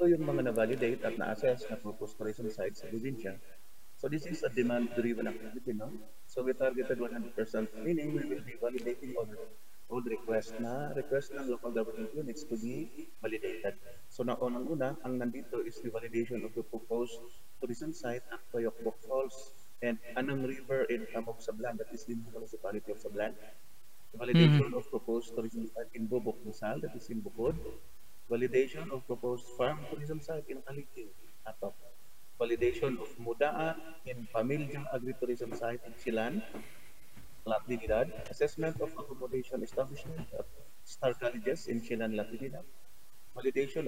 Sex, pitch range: male, 115-145 Hz